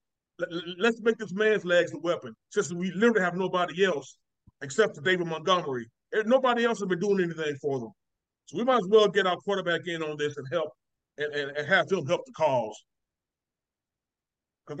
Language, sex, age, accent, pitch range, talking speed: English, male, 30-49, American, 160-205 Hz, 195 wpm